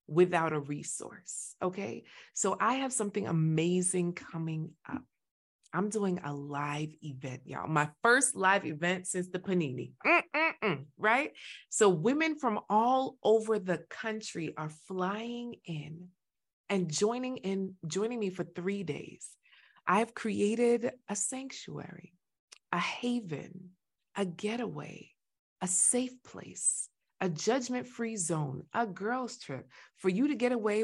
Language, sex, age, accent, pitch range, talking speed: English, female, 30-49, American, 160-215 Hz, 130 wpm